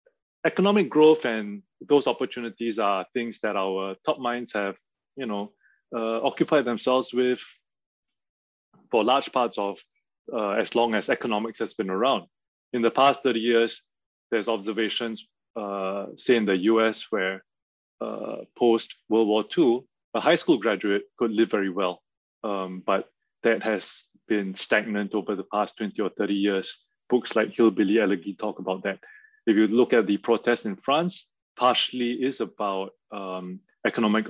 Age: 20-39